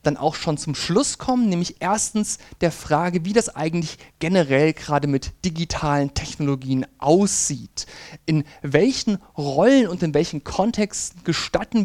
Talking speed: 135 wpm